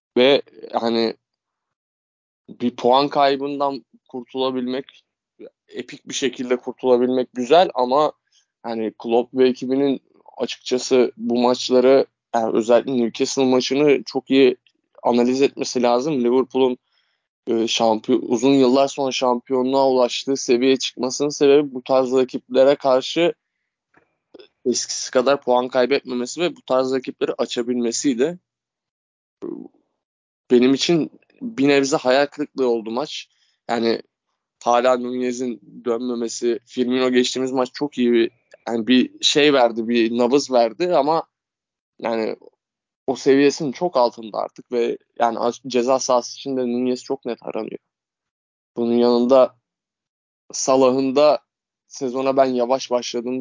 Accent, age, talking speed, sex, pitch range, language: native, 20-39, 110 wpm, male, 120-135 Hz, Turkish